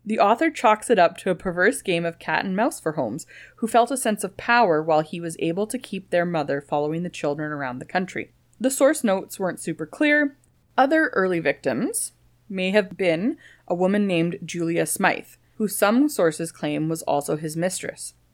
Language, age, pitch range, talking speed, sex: English, 20-39, 165-230 Hz, 195 wpm, female